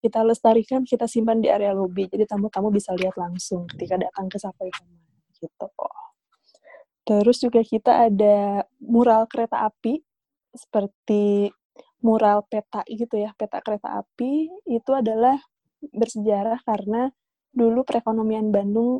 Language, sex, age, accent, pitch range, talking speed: Indonesian, female, 20-39, native, 205-240 Hz, 125 wpm